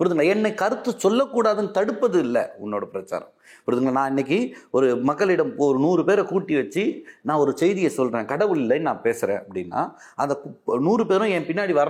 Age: 30-49